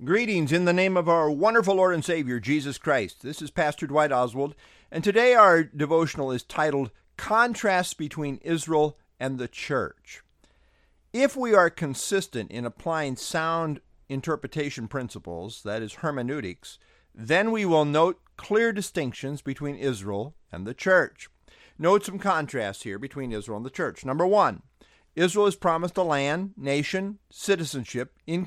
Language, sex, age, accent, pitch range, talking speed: English, male, 50-69, American, 120-185 Hz, 150 wpm